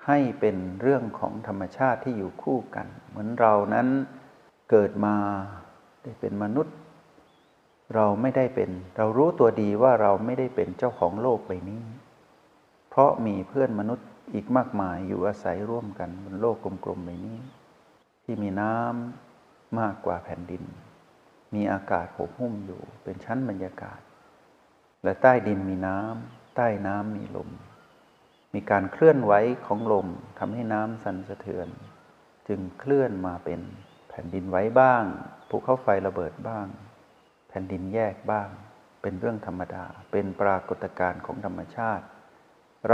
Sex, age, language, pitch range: male, 60-79, Thai, 95-125 Hz